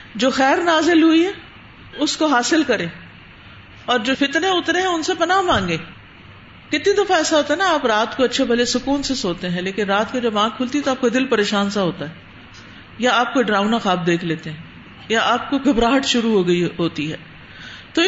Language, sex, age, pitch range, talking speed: Urdu, female, 50-69, 195-280 Hz, 215 wpm